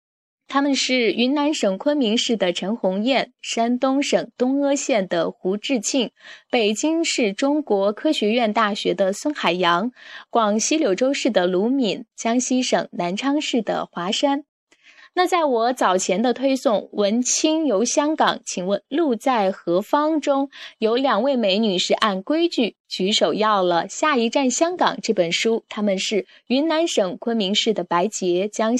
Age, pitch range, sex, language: 10-29, 195-275 Hz, female, Chinese